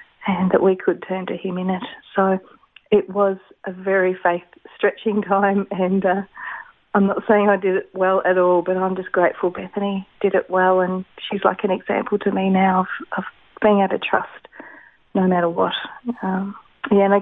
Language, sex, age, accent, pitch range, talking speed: English, female, 40-59, Australian, 185-205 Hz, 200 wpm